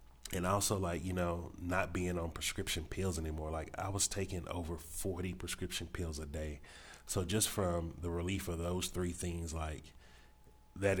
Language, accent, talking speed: English, American, 175 wpm